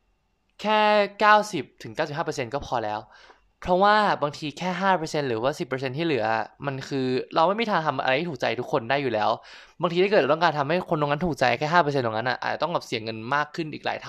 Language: Thai